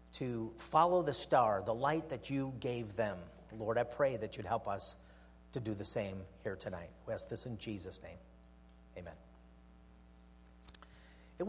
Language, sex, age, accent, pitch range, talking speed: English, male, 50-69, American, 85-135 Hz, 160 wpm